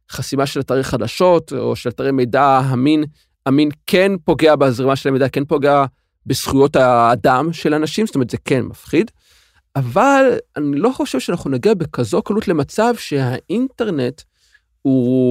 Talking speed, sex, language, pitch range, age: 145 wpm, male, Hebrew, 130-185 Hz, 40-59